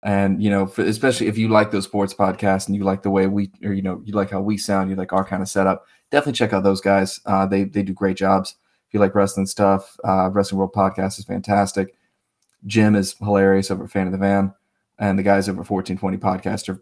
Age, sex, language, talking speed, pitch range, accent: 20-39, male, English, 245 wpm, 95-105 Hz, American